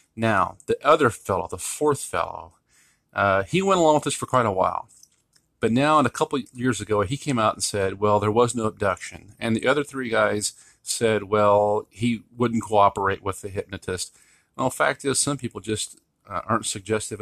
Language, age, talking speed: English, 40-59, 200 wpm